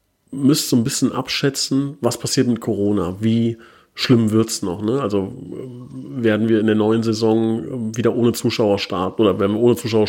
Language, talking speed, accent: German, 185 wpm, German